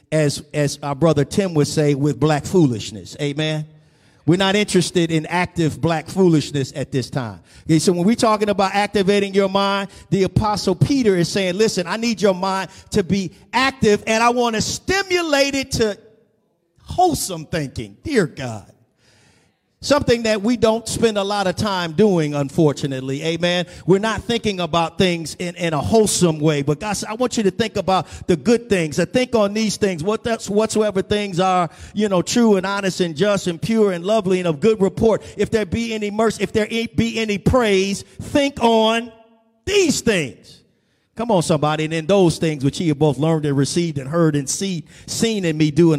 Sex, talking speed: male, 195 wpm